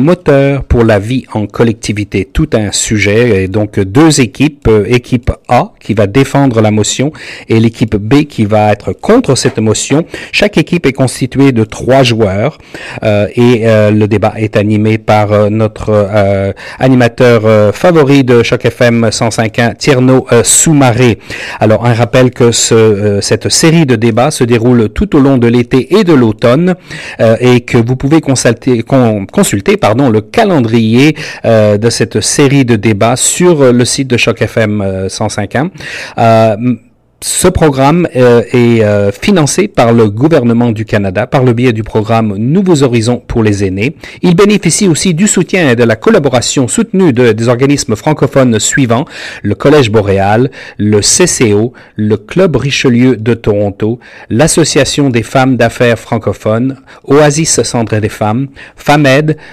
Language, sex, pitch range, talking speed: French, male, 110-140 Hz, 160 wpm